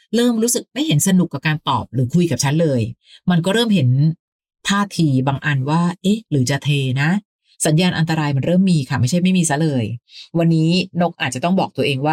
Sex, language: female, Thai